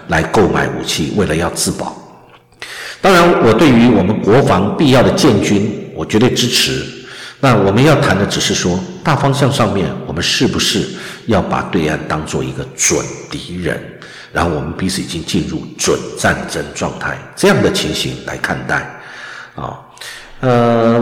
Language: Chinese